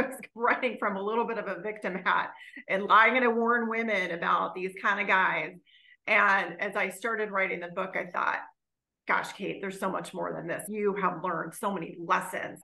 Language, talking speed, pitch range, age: English, 215 wpm, 190-235 Hz, 30-49